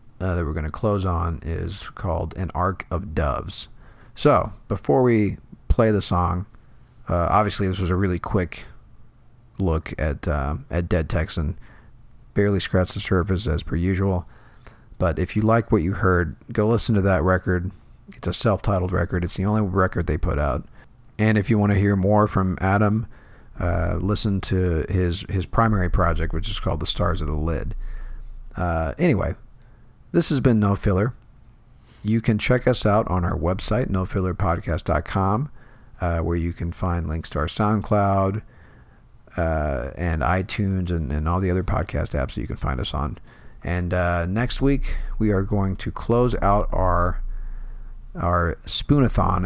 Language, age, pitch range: English, 40-59, 85-110 Hz